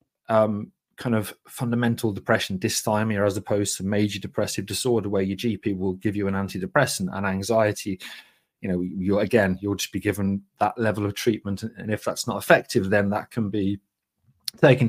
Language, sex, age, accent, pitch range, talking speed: English, male, 30-49, British, 105-125 Hz, 175 wpm